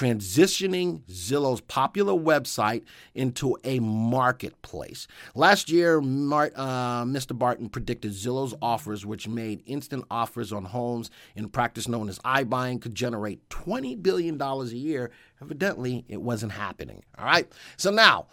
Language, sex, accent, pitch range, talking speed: English, male, American, 110-145 Hz, 135 wpm